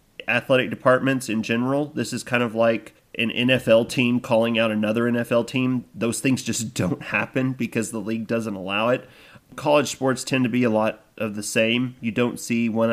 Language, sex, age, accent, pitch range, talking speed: English, male, 30-49, American, 105-120 Hz, 195 wpm